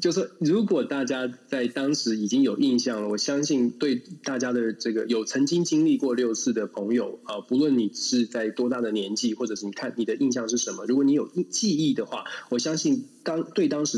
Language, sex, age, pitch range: Chinese, male, 20-39, 115-175 Hz